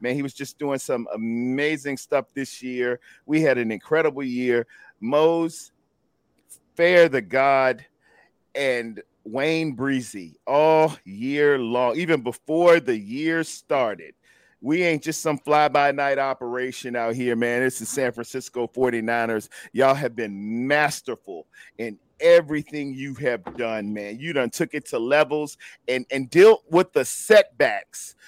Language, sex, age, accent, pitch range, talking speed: English, male, 40-59, American, 130-180 Hz, 140 wpm